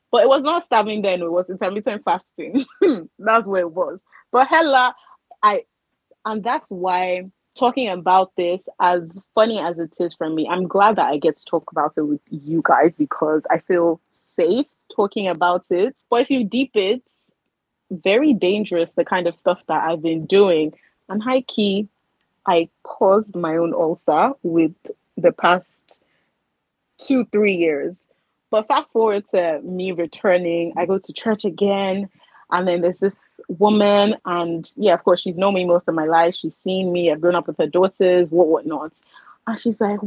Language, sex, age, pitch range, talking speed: English, female, 20-39, 175-235 Hz, 180 wpm